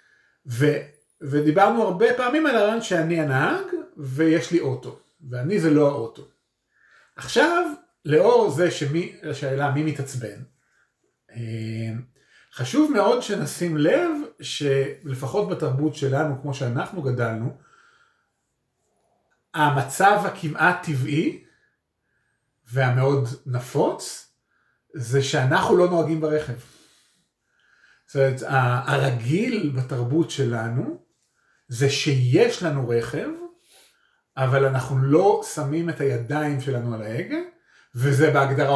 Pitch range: 135-190 Hz